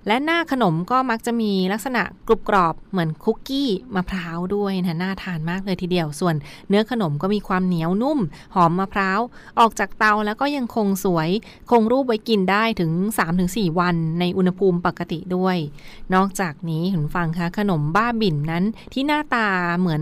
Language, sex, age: Thai, female, 20-39